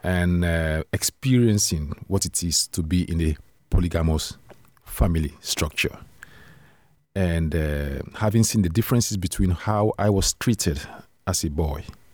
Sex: male